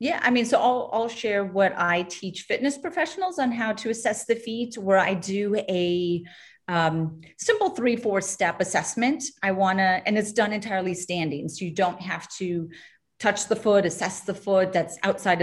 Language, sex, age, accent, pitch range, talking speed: English, female, 30-49, American, 175-215 Hz, 190 wpm